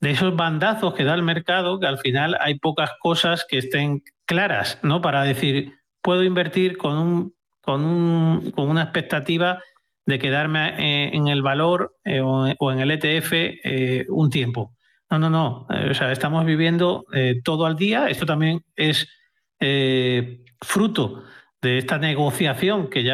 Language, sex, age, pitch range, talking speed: Spanish, male, 40-59, 135-180 Hz, 160 wpm